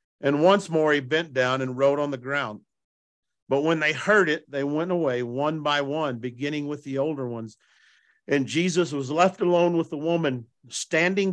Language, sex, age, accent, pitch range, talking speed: English, male, 50-69, American, 130-170 Hz, 190 wpm